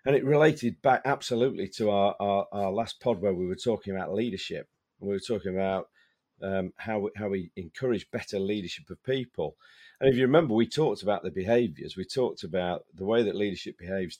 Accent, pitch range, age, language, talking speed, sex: British, 95-120 Hz, 40-59, English, 205 wpm, male